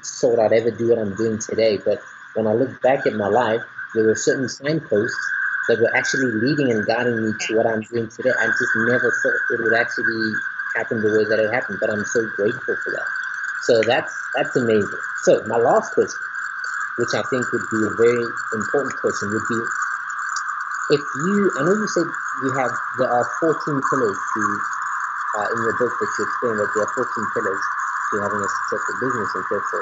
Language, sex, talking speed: English, male, 205 wpm